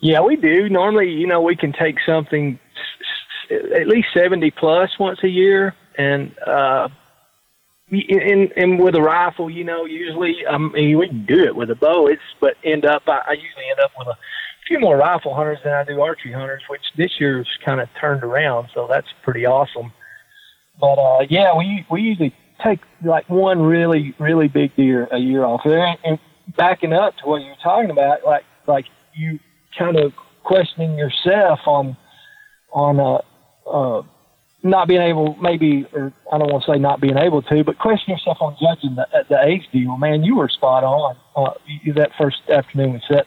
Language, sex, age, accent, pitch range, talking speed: English, male, 40-59, American, 145-185 Hz, 195 wpm